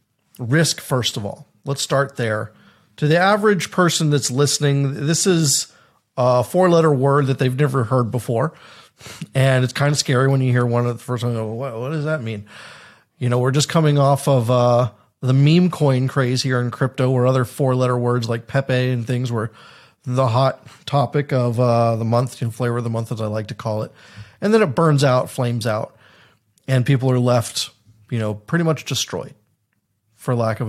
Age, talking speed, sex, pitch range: 40-59, 200 wpm, male, 120-155 Hz